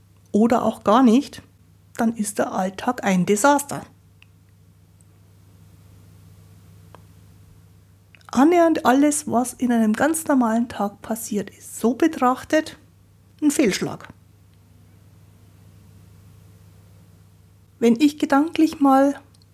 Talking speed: 85 wpm